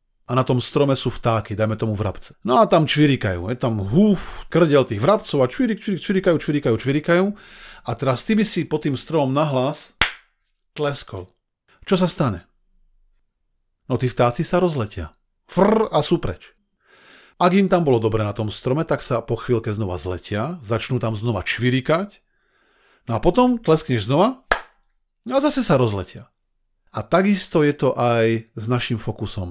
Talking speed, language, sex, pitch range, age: 165 wpm, Slovak, male, 115-160 Hz, 40-59